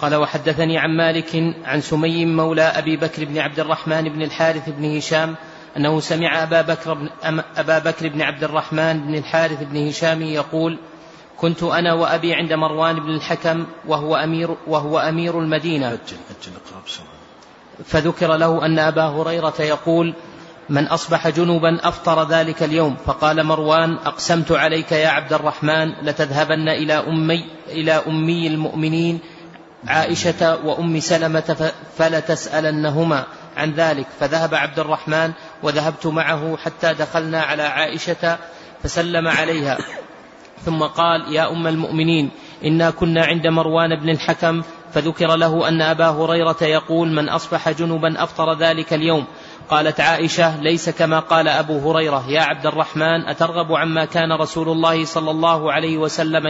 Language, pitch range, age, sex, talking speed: Arabic, 155-165 Hz, 30-49, male, 130 wpm